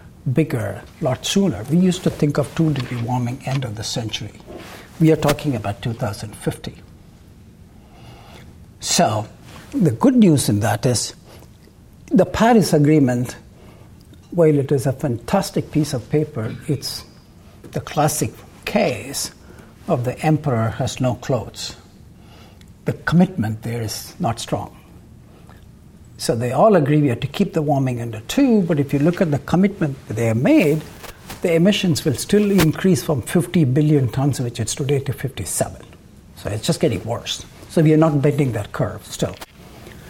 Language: English